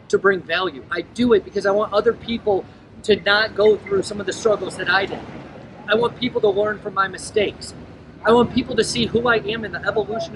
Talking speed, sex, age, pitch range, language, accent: 240 wpm, male, 30-49, 195-225 Hz, English, American